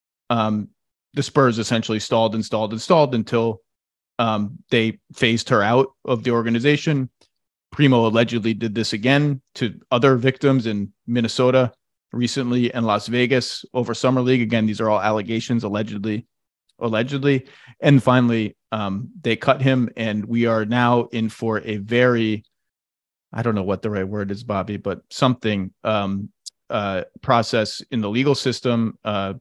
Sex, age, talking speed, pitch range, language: male, 30-49, 155 wpm, 110-125 Hz, English